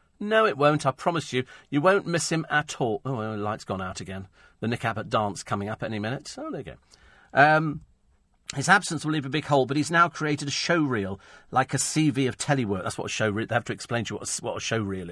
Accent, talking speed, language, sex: British, 255 wpm, English, male